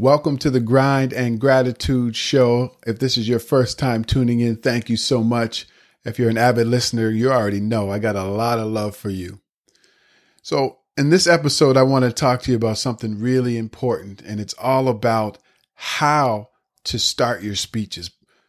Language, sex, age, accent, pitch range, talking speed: English, male, 40-59, American, 110-135 Hz, 190 wpm